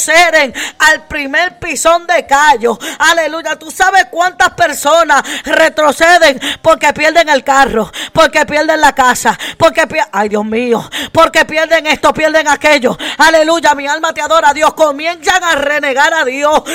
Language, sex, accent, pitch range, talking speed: Spanish, female, American, 275-335 Hz, 145 wpm